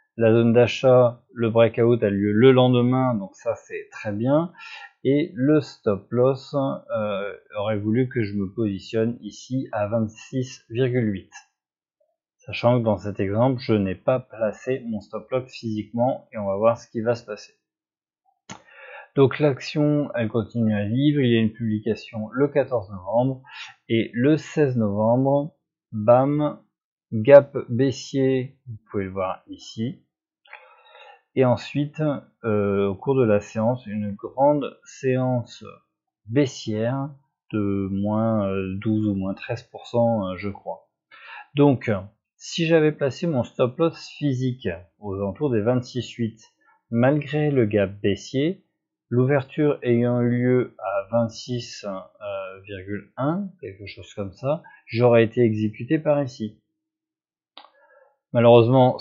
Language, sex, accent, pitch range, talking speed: French, male, French, 110-140 Hz, 125 wpm